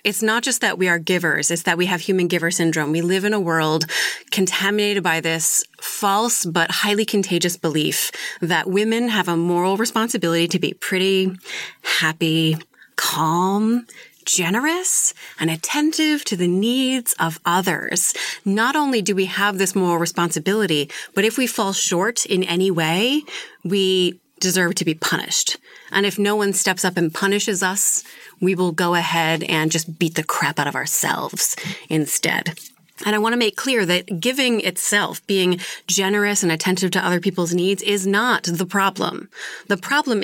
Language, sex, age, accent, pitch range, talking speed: English, female, 30-49, American, 175-210 Hz, 165 wpm